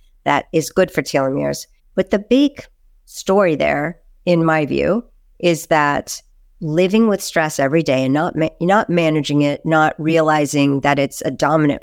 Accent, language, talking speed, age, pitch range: American, English, 160 wpm, 50-69, 140-170 Hz